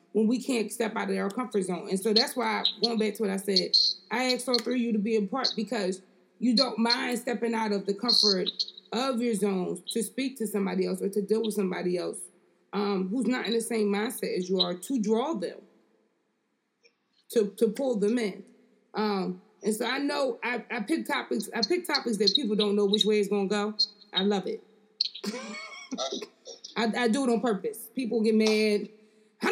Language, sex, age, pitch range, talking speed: English, female, 20-39, 200-235 Hz, 215 wpm